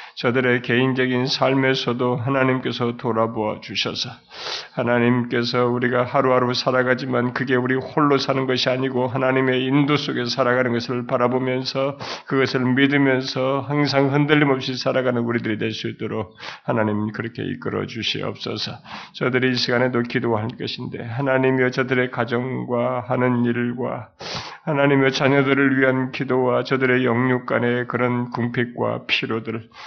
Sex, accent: male, native